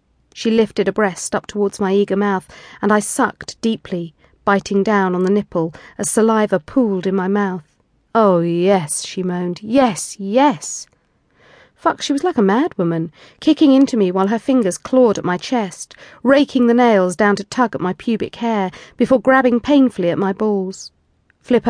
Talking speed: 175 wpm